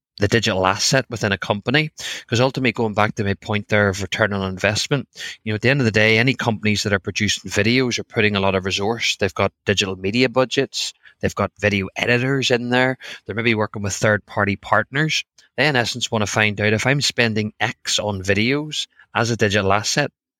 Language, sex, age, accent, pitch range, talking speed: English, male, 20-39, Irish, 105-120 Hz, 215 wpm